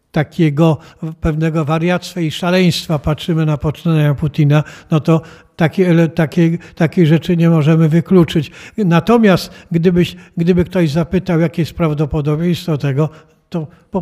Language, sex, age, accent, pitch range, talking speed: Polish, male, 60-79, native, 155-175 Hz, 125 wpm